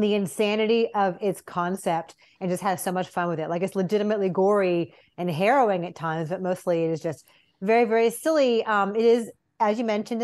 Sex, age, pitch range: female, 30-49, 175-210 Hz